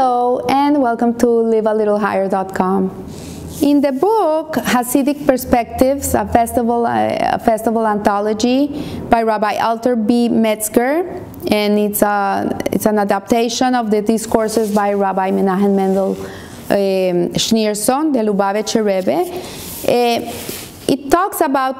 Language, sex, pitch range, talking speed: English, female, 205-245 Hz, 120 wpm